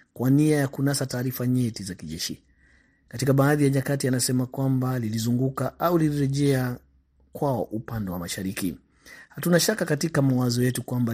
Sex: male